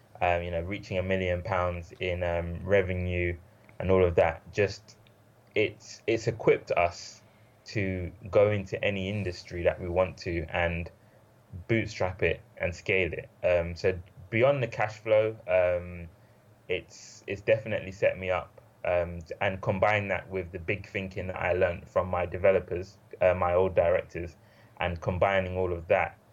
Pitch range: 85-110 Hz